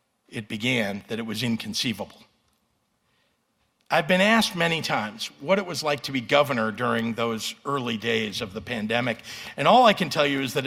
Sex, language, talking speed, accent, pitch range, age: male, English, 185 wpm, American, 115-165 Hz, 50-69